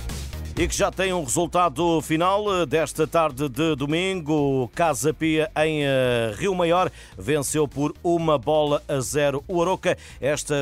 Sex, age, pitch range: male, 50-69, 135-170 Hz